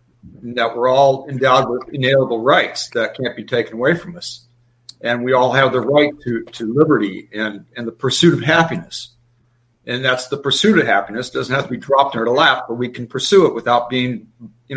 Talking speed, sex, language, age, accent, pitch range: 215 wpm, male, English, 50-69, American, 120-160 Hz